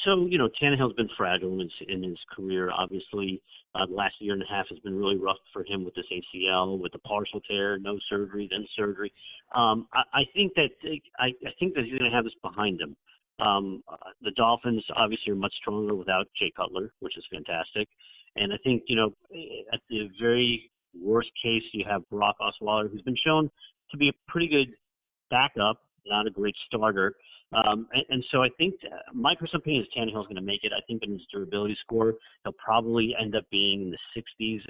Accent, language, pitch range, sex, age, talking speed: American, English, 100-115 Hz, male, 50-69, 210 wpm